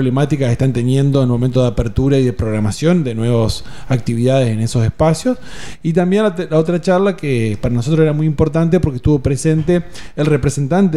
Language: Spanish